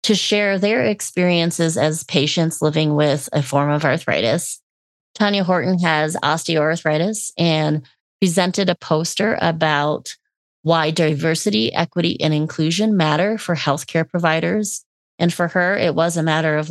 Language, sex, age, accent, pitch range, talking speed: English, female, 30-49, American, 150-175 Hz, 135 wpm